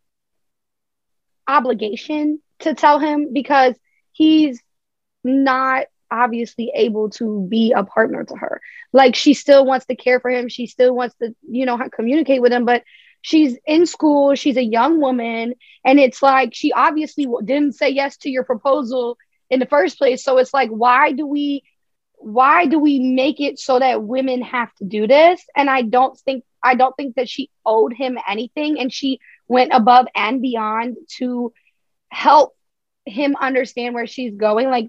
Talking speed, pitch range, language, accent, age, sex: 170 wpm, 245-290 Hz, English, American, 20-39, female